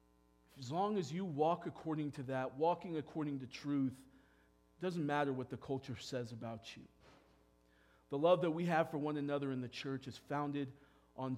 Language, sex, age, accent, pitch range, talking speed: English, male, 40-59, American, 115-155 Hz, 185 wpm